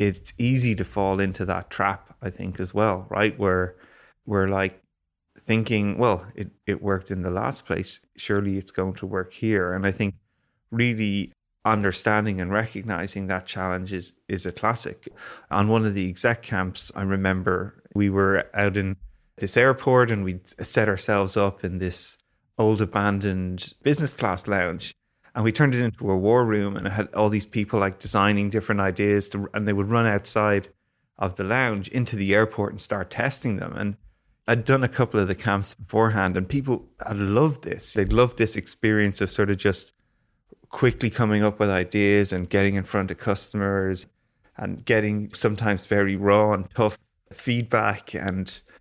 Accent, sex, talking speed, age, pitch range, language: Irish, male, 180 wpm, 20-39, 95-110 Hz, English